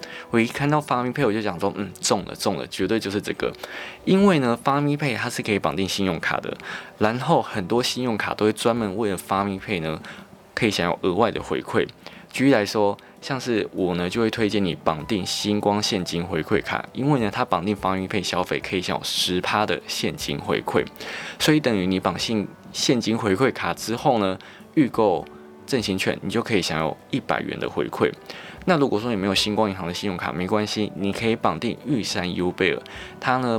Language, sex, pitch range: Chinese, male, 95-115 Hz